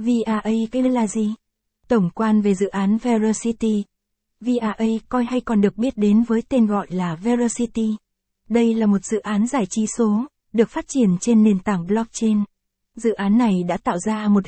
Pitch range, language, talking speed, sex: 205-235 Hz, Vietnamese, 180 wpm, female